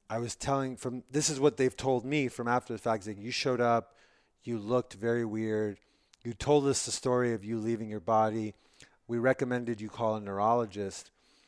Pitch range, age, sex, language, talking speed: 95-110 Hz, 30-49, male, English, 200 wpm